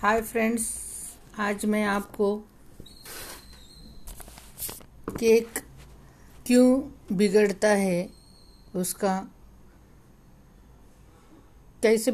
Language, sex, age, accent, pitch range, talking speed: Hindi, female, 60-79, native, 195-220 Hz, 55 wpm